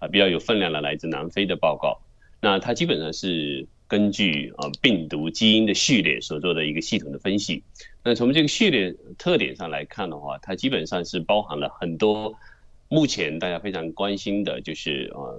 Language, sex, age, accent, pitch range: Chinese, male, 30-49, native, 80-110 Hz